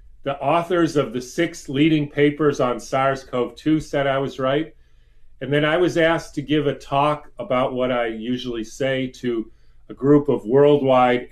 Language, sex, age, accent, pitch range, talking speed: English, male, 40-59, American, 120-145 Hz, 170 wpm